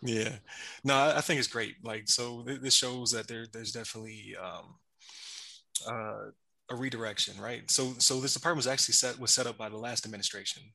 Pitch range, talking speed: 110-125 Hz, 195 wpm